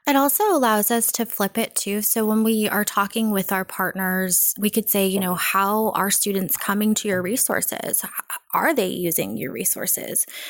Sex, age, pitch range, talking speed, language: female, 20-39, 185-215 Hz, 190 wpm, English